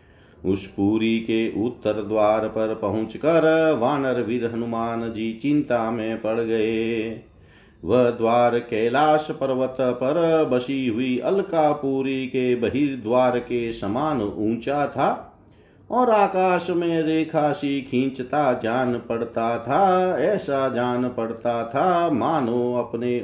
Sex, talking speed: male, 115 wpm